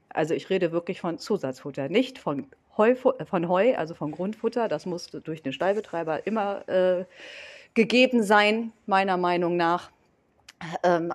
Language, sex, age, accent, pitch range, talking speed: German, female, 40-59, German, 175-240 Hz, 140 wpm